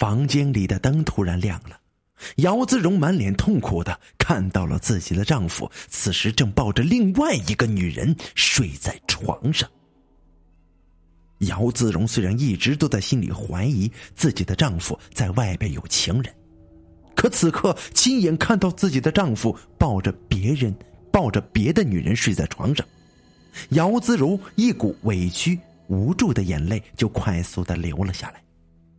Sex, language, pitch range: male, Chinese, 85-140 Hz